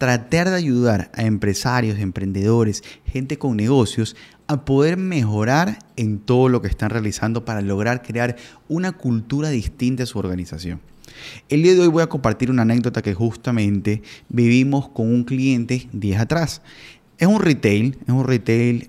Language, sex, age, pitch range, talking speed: Spanish, male, 30-49, 110-155 Hz, 160 wpm